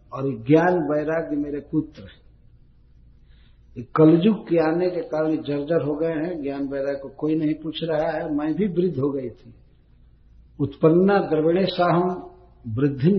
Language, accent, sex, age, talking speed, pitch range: Hindi, native, male, 60-79, 145 wpm, 125-170 Hz